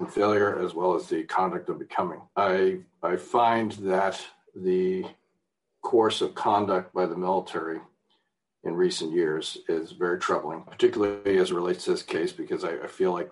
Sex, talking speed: male, 165 wpm